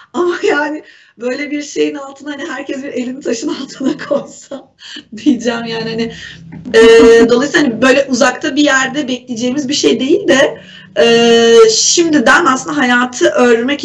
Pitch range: 230-290 Hz